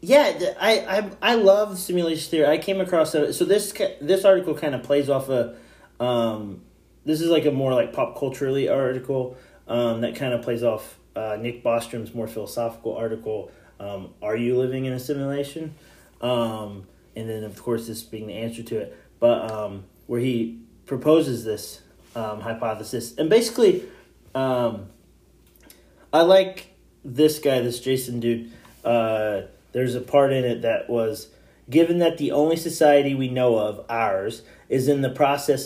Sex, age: male, 30-49